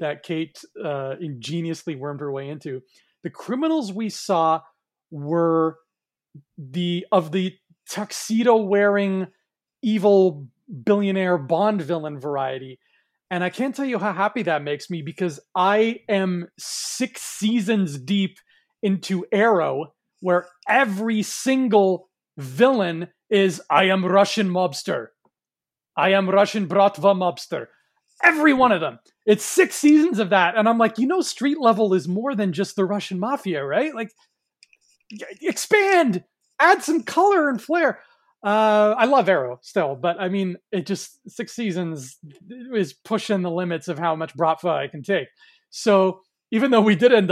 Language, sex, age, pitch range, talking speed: English, male, 30-49, 165-220 Hz, 145 wpm